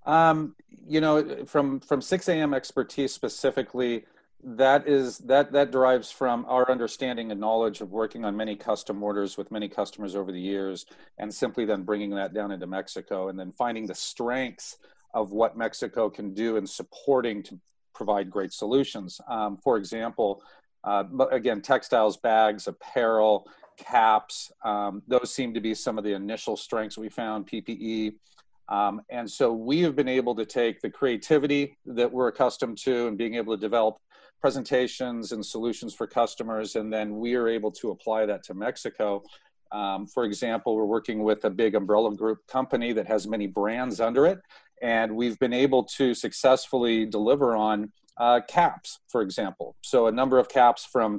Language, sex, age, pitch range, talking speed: English, male, 40-59, 105-130 Hz, 170 wpm